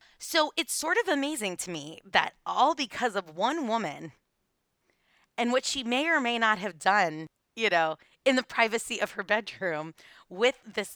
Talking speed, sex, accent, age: 175 wpm, female, American, 20-39